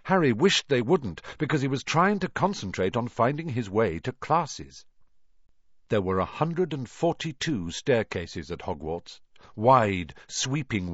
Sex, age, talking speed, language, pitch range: male, 50-69, 150 wpm, English, 110-170 Hz